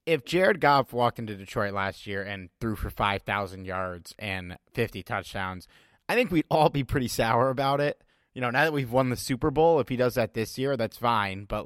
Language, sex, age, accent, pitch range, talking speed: English, male, 30-49, American, 100-130 Hz, 220 wpm